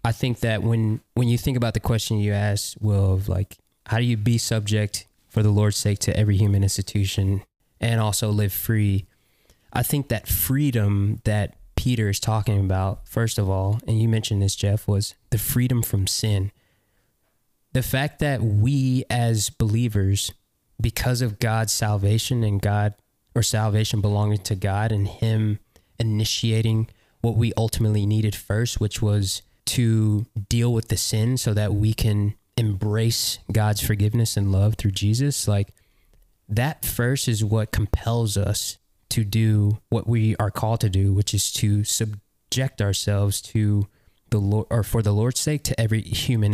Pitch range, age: 105-115 Hz, 20-39